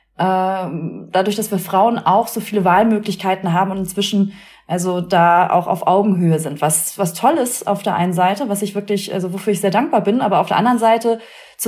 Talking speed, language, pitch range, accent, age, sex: 205 wpm, German, 190-245 Hz, German, 30-49, female